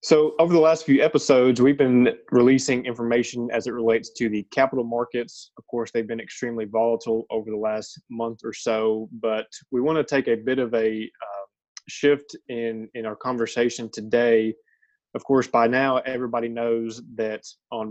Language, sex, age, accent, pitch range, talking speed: English, male, 20-39, American, 115-130 Hz, 180 wpm